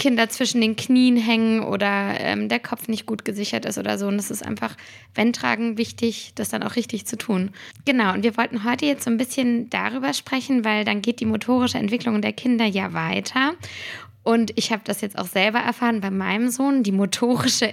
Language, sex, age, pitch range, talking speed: German, female, 20-39, 205-250 Hz, 210 wpm